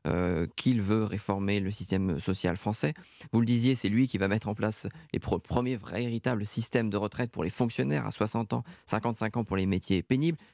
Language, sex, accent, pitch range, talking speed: French, male, French, 100-130 Hz, 210 wpm